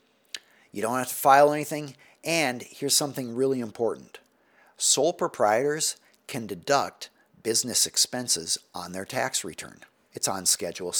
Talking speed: 130 wpm